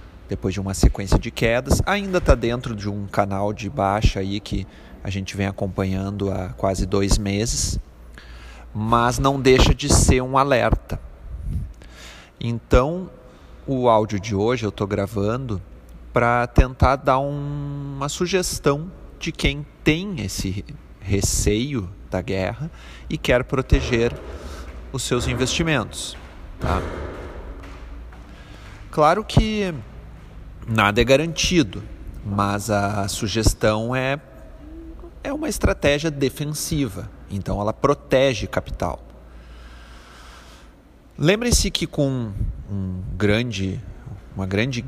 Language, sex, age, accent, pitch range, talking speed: Portuguese, male, 30-49, Brazilian, 95-135 Hz, 105 wpm